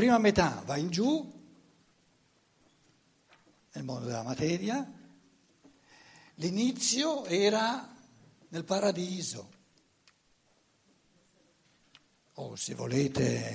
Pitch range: 130-205 Hz